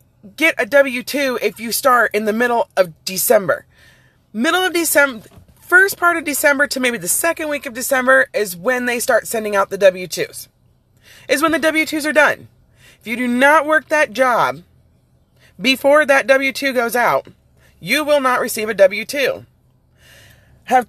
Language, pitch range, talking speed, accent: English, 210-290 Hz, 165 wpm, American